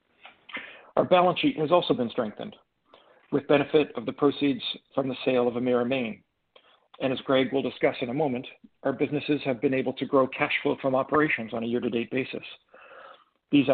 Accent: American